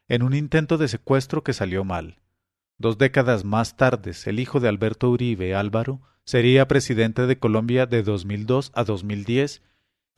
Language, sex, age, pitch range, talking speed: English, male, 40-59, 100-130 Hz, 155 wpm